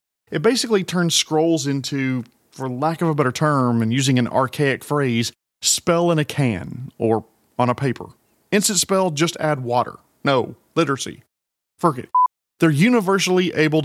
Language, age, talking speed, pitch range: English, 40-59, 150 wpm, 125-175 Hz